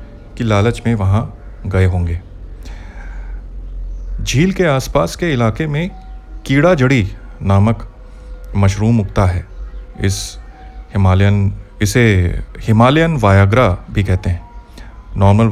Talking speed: 105 wpm